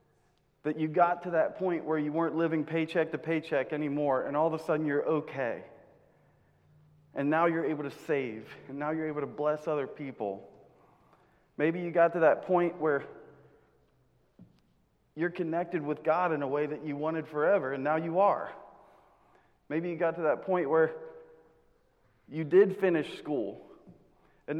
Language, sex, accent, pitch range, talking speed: English, male, American, 155-180 Hz, 170 wpm